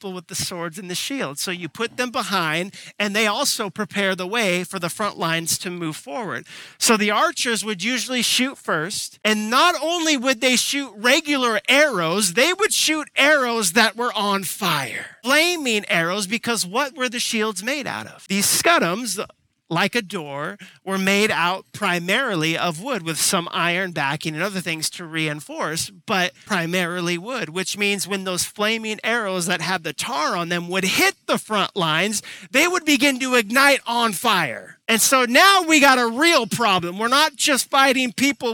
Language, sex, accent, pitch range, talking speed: English, male, American, 190-260 Hz, 180 wpm